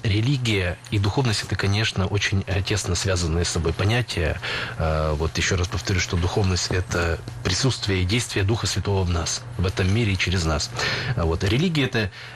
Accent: native